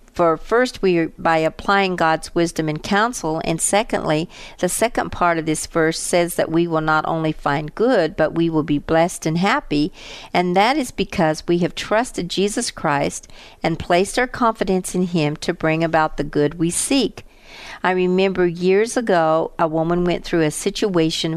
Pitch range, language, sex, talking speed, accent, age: 160-195 Hz, English, female, 185 wpm, American, 50-69